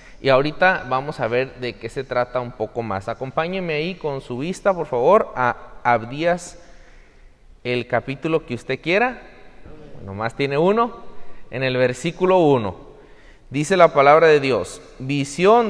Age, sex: 30-49, male